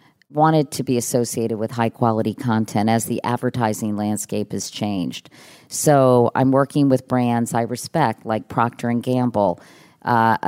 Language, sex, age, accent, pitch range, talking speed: English, female, 40-59, American, 115-140 Hz, 135 wpm